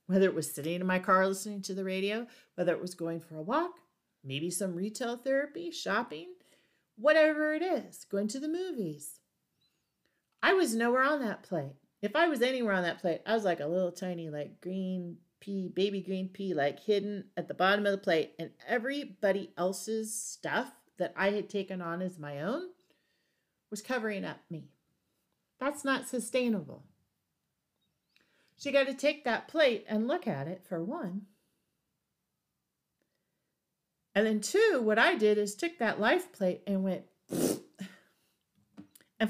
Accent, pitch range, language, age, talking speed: American, 180-245 Hz, English, 40-59, 165 wpm